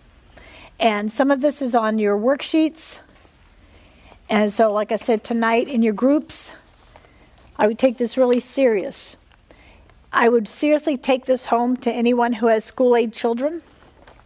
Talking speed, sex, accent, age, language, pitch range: 145 wpm, female, American, 50-69, English, 205-260 Hz